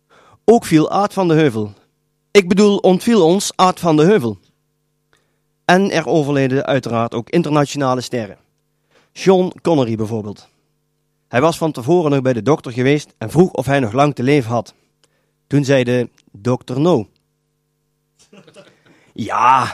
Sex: male